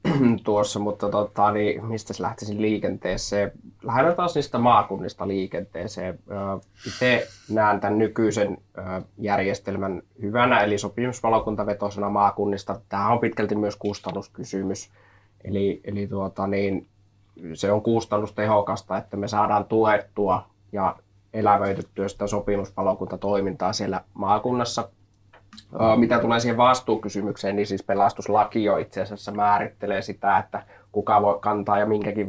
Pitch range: 100-105 Hz